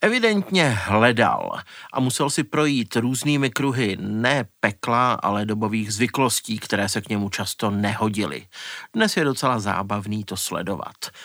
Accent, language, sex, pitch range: native, Czech, male, 110-135 Hz